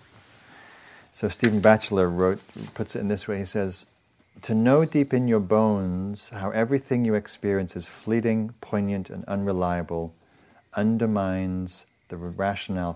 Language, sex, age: English, male, 40-59